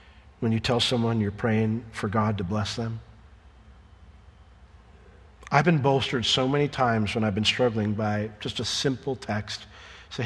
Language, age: English, 40-59